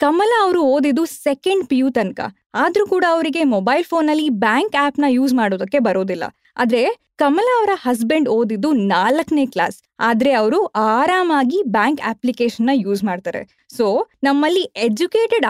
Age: 20-39